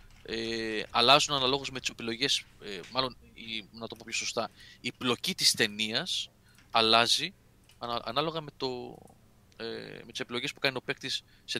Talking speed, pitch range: 155 wpm, 105-130 Hz